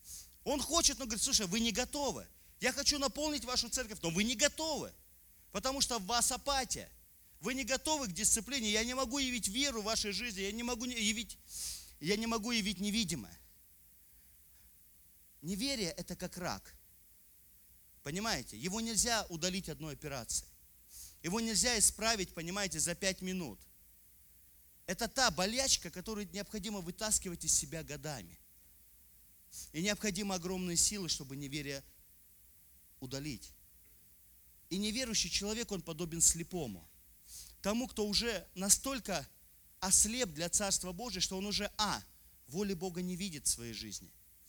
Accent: native